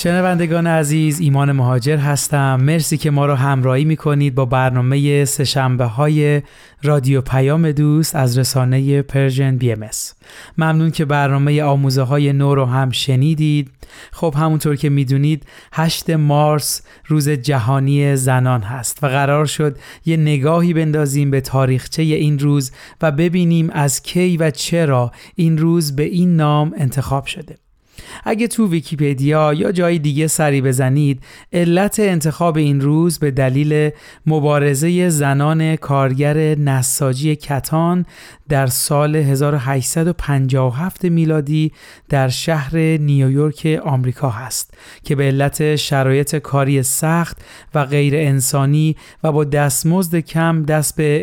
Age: 30-49